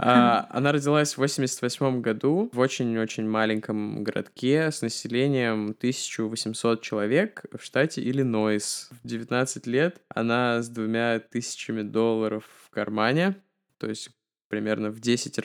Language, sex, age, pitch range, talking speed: Russian, male, 20-39, 110-160 Hz, 125 wpm